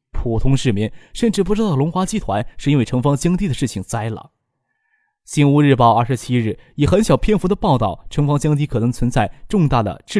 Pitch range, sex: 115-150 Hz, male